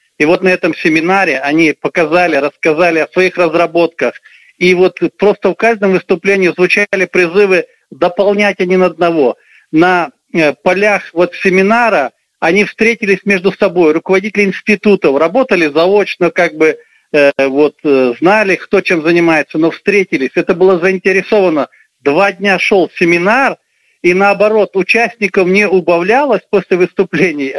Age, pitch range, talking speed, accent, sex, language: 50-69, 165-200 Hz, 125 wpm, native, male, Russian